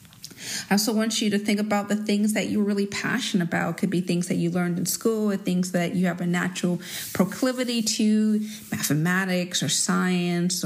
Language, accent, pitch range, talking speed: English, American, 180-210 Hz, 190 wpm